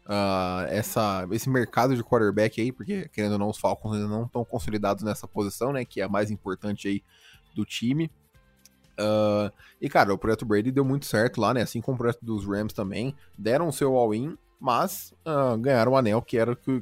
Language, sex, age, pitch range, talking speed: Portuguese, male, 20-39, 105-120 Hz, 190 wpm